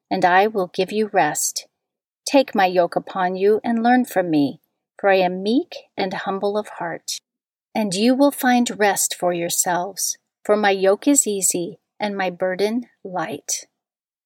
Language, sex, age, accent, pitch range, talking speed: English, female, 40-59, American, 185-245 Hz, 165 wpm